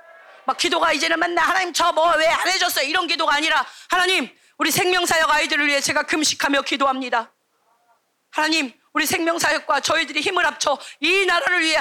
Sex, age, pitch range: female, 40-59, 275-335 Hz